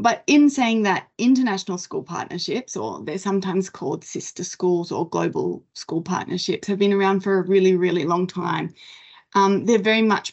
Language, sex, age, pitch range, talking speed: English, female, 20-39, 185-215 Hz, 175 wpm